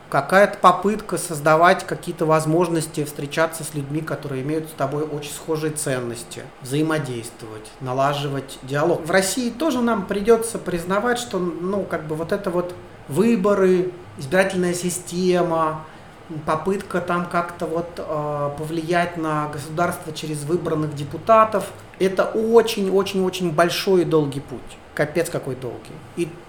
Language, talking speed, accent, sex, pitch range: Russian, 120 wpm, native, male, 150-190 Hz